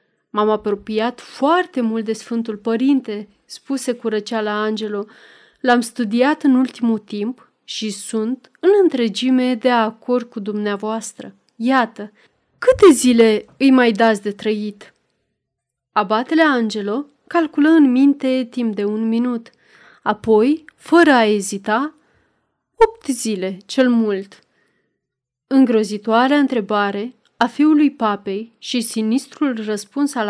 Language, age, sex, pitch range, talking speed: Romanian, 30-49, female, 215-275 Hz, 115 wpm